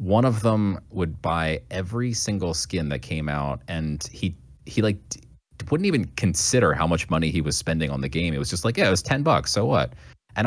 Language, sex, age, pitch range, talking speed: English, male, 30-49, 80-105 Hz, 225 wpm